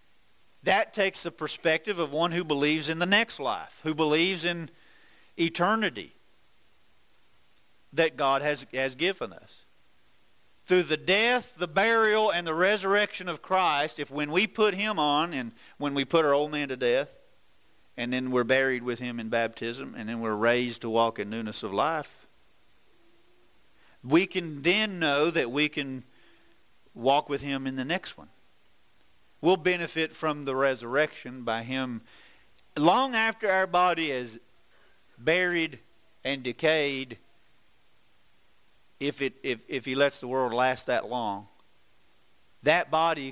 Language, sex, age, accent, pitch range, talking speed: English, male, 50-69, American, 125-175 Hz, 150 wpm